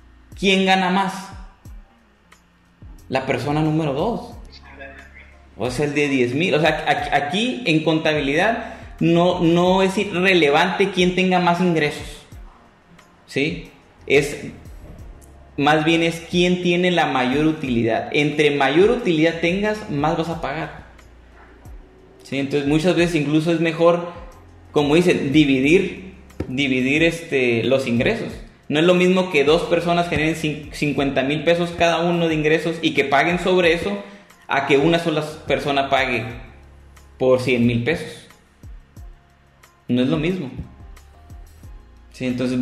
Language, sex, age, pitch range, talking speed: Spanish, male, 30-49, 125-170 Hz, 130 wpm